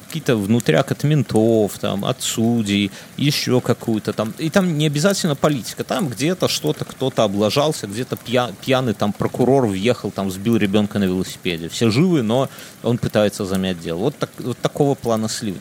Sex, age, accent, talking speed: male, 30-49, native, 170 wpm